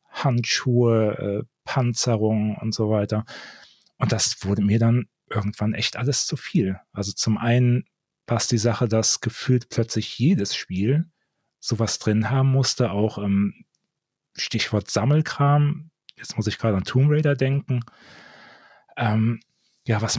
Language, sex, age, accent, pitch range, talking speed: German, male, 40-59, German, 105-125 Hz, 135 wpm